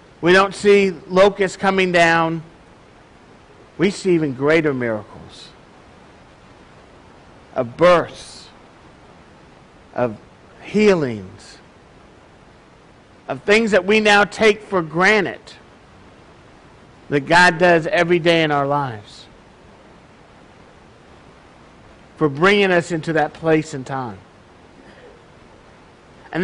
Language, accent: English, American